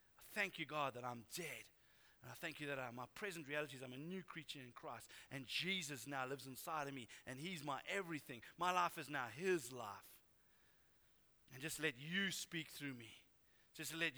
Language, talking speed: English, 205 wpm